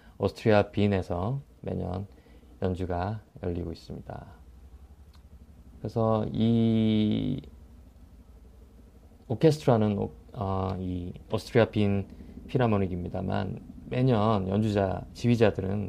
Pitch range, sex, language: 85-110 Hz, male, Korean